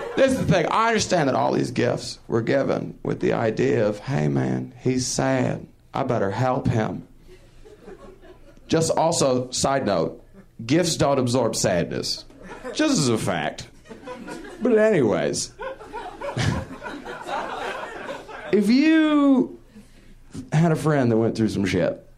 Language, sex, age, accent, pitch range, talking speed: English, male, 40-59, American, 110-170 Hz, 130 wpm